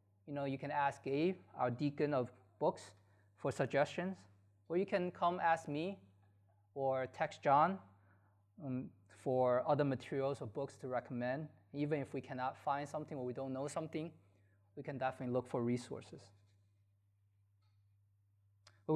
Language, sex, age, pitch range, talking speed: English, male, 20-39, 100-145 Hz, 150 wpm